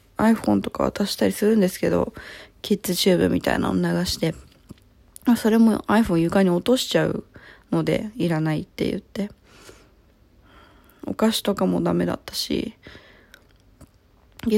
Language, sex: Japanese, female